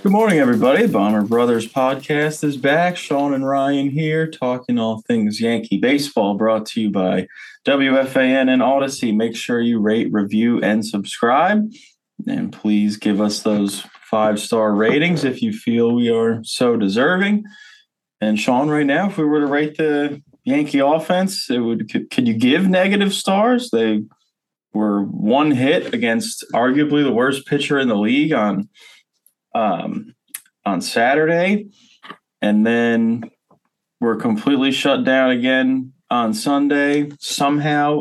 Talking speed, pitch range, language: 145 wpm, 115-165 Hz, English